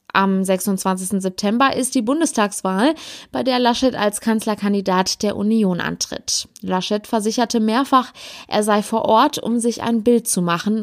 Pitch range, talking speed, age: 195-235 Hz, 150 wpm, 20-39